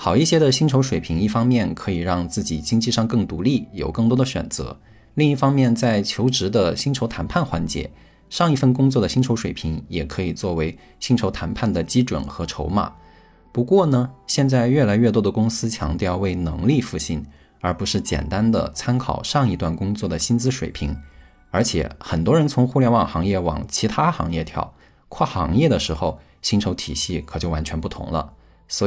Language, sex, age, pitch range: Chinese, male, 20-39, 85-125 Hz